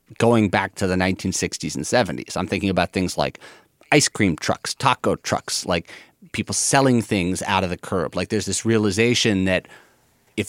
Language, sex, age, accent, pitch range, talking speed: English, male, 30-49, American, 95-135 Hz, 175 wpm